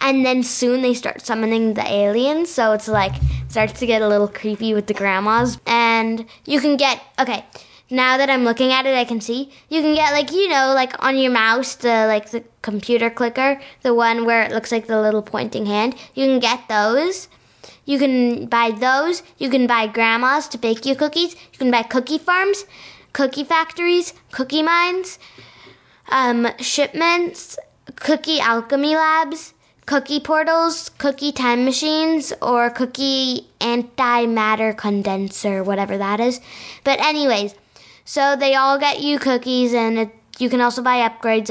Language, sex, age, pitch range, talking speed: English, female, 10-29, 225-275 Hz, 170 wpm